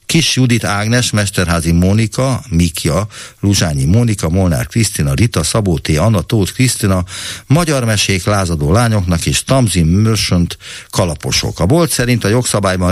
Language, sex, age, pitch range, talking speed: Hungarian, male, 60-79, 85-110 Hz, 135 wpm